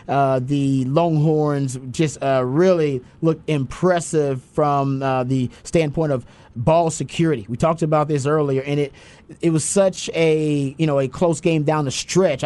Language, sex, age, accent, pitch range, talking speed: English, male, 30-49, American, 130-155 Hz, 165 wpm